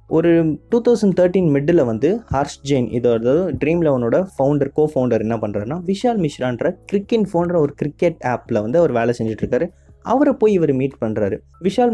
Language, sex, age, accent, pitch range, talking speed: Tamil, male, 20-39, native, 120-165 Hz, 160 wpm